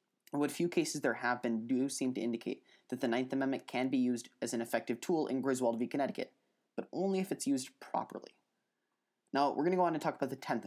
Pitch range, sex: 120-140 Hz, male